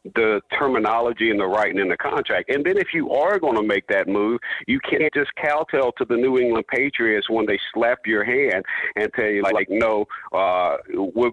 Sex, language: male, English